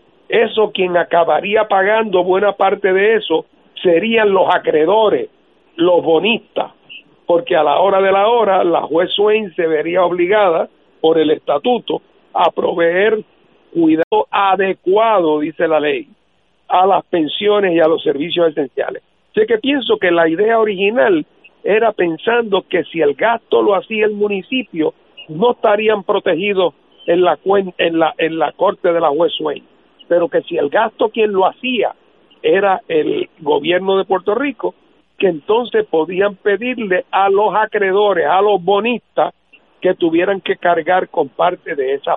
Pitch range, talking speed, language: 170-225 Hz, 150 wpm, Spanish